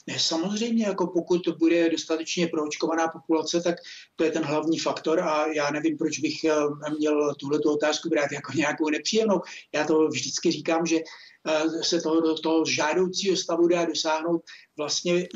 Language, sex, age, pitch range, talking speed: Czech, male, 60-79, 155-180 Hz, 155 wpm